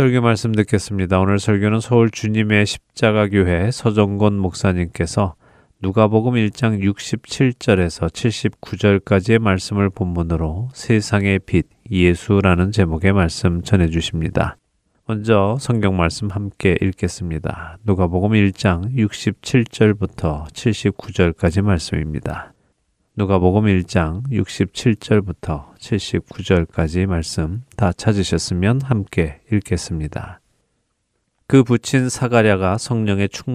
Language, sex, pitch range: Korean, male, 90-110 Hz